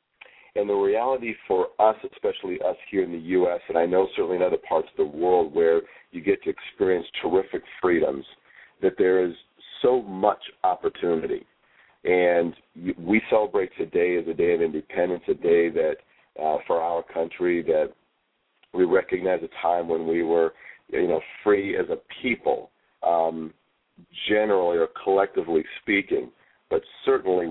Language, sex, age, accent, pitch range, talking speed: English, male, 50-69, American, 345-440 Hz, 155 wpm